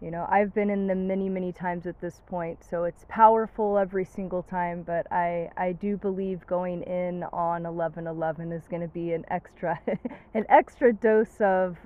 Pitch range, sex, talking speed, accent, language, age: 170-190 Hz, female, 185 wpm, American, English, 20-39